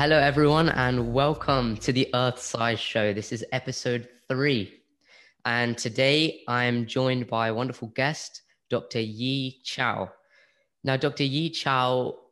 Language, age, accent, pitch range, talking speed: English, 10-29, British, 110-130 Hz, 140 wpm